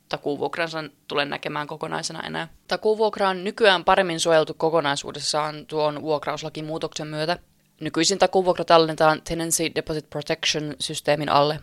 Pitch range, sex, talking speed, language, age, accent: 145-175 Hz, female, 120 wpm, Finnish, 20-39, native